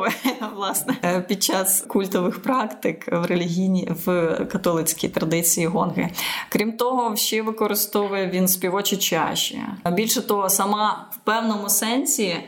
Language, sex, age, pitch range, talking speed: Ukrainian, female, 20-39, 190-220 Hz, 115 wpm